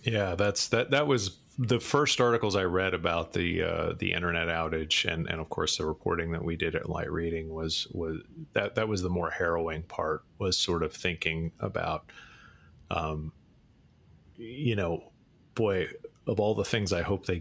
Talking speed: 185 wpm